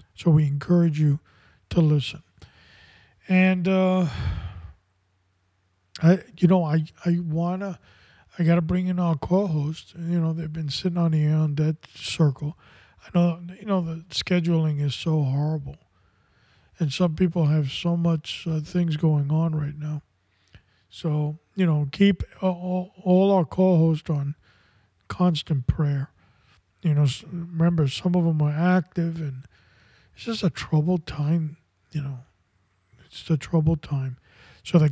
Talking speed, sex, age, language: 150 wpm, male, 50-69, English